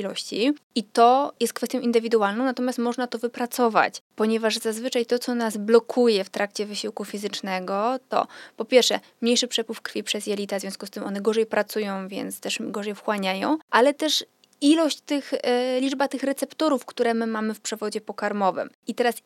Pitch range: 210-250 Hz